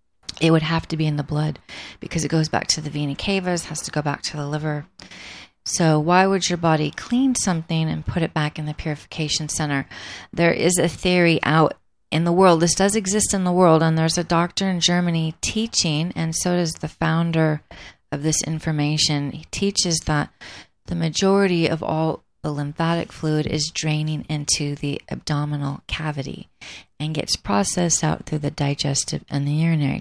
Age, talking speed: 30-49, 185 wpm